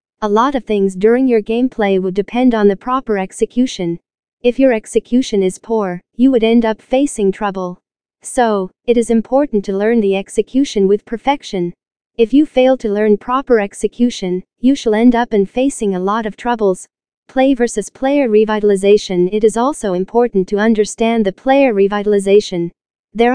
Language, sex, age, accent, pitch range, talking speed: English, female, 40-59, American, 200-240 Hz, 165 wpm